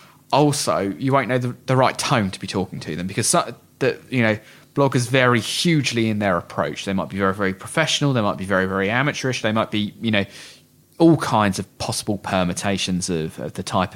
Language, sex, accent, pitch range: English, male, British, 100-130 Hz